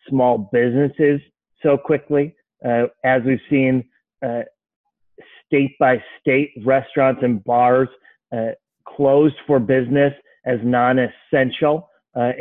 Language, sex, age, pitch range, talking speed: English, male, 30-49, 120-135 Hz, 110 wpm